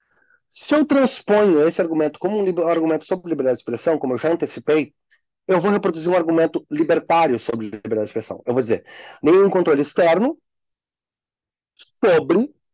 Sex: male